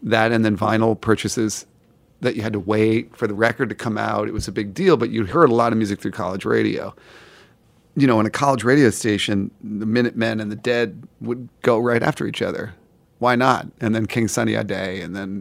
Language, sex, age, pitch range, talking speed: English, male, 40-59, 110-125 Hz, 230 wpm